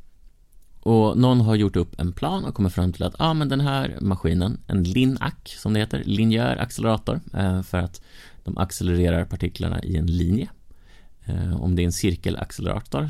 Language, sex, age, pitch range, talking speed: Swedish, male, 30-49, 85-110 Hz, 150 wpm